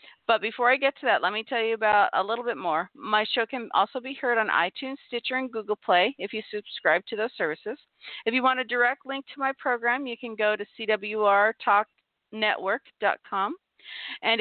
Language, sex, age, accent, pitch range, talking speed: English, female, 50-69, American, 205-255 Hz, 200 wpm